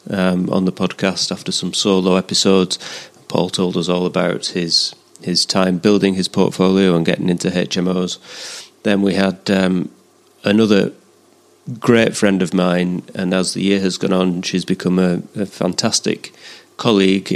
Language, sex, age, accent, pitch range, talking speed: English, male, 30-49, British, 90-95 Hz, 155 wpm